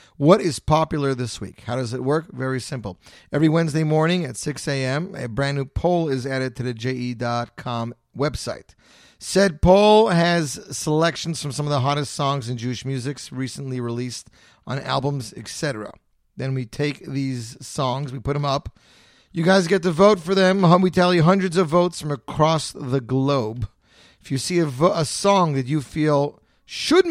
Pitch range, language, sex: 120-160 Hz, English, male